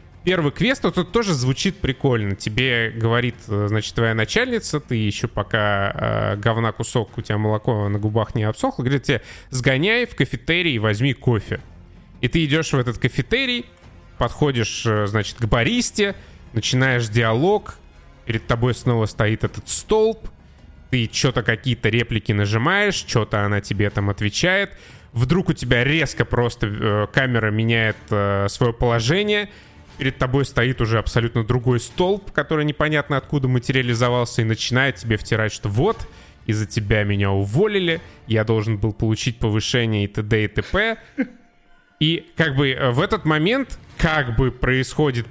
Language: Russian